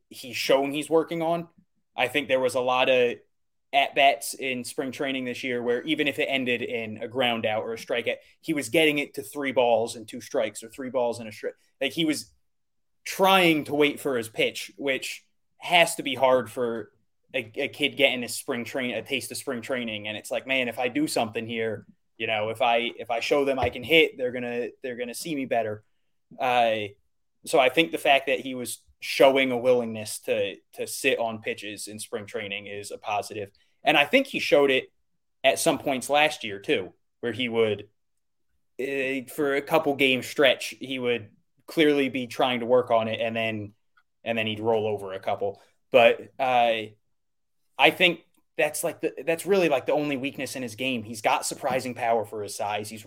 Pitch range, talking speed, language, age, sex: 115-155 Hz, 215 wpm, English, 20-39, male